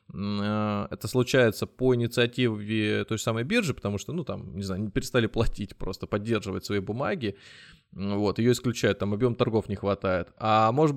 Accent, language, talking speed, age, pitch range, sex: native, Russian, 165 wpm, 20-39, 100-125 Hz, male